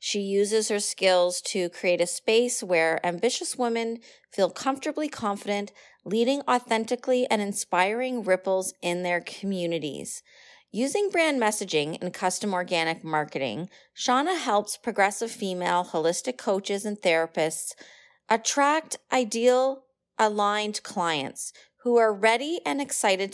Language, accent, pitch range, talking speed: English, American, 185-250 Hz, 120 wpm